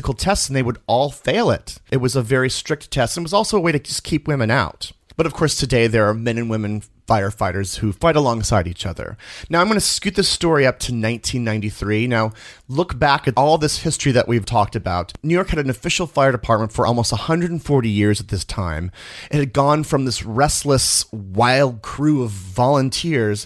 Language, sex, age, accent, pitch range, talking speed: English, male, 30-49, American, 105-150 Hz, 210 wpm